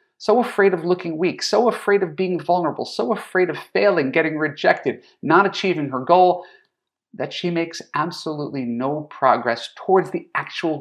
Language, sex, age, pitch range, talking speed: English, male, 40-59, 130-195 Hz, 160 wpm